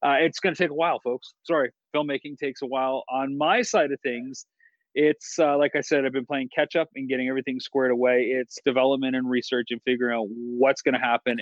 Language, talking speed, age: English, 230 wpm, 30-49